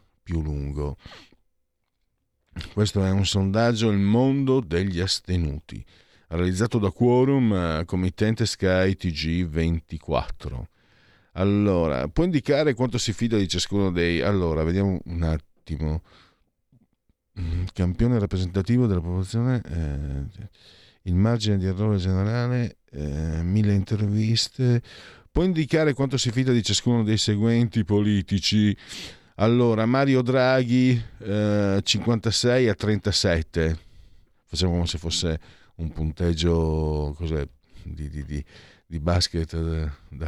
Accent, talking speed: native, 110 wpm